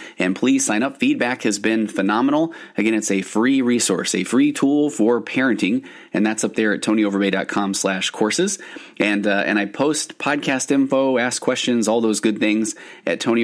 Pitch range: 95-120 Hz